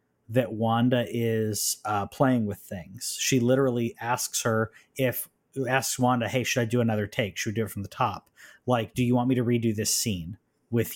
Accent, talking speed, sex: American, 205 wpm, male